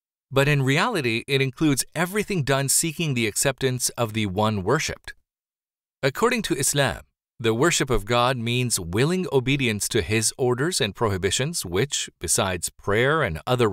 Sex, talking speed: male, 150 wpm